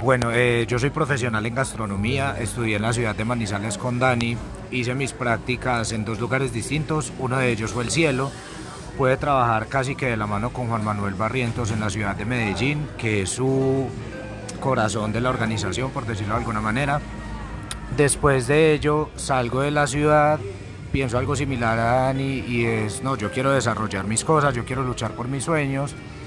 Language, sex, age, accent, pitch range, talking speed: Spanish, male, 40-59, Colombian, 110-135 Hz, 185 wpm